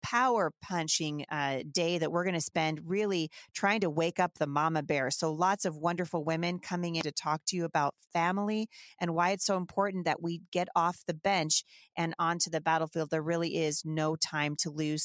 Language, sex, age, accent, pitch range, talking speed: English, female, 30-49, American, 155-195 Hz, 205 wpm